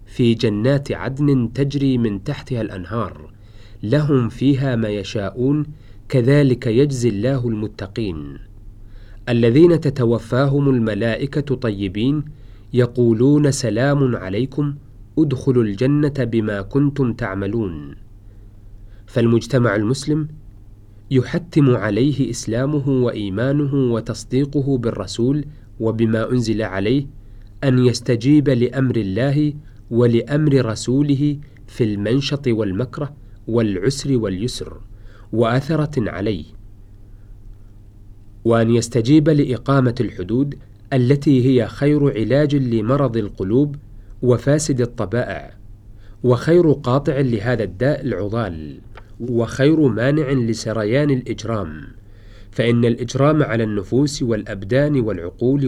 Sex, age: male, 40-59